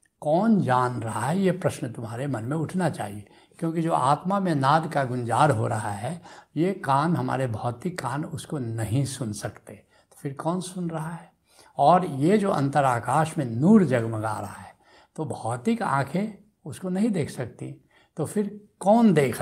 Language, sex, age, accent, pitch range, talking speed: Hindi, male, 70-89, native, 130-180 Hz, 175 wpm